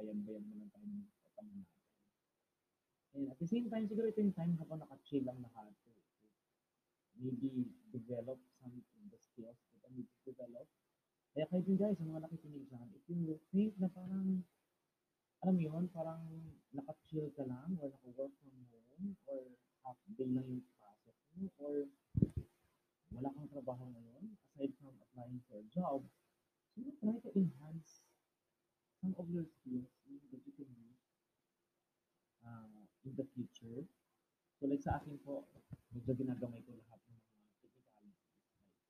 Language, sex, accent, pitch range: Filipino, male, native, 125-175 Hz